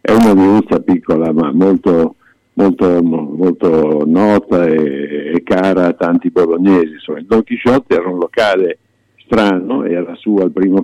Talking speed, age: 150 wpm, 60-79